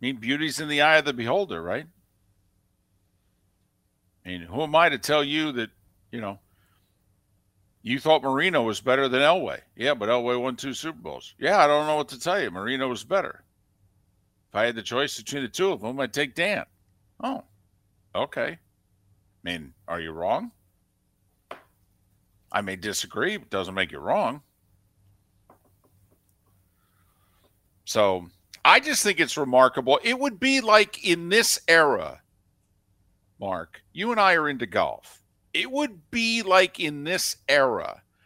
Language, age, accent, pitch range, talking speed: English, 50-69, American, 95-160 Hz, 160 wpm